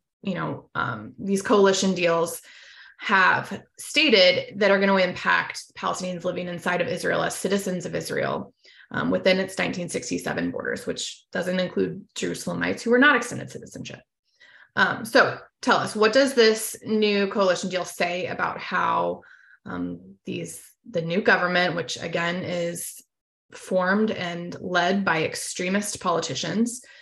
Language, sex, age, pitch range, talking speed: English, female, 20-39, 175-215 Hz, 140 wpm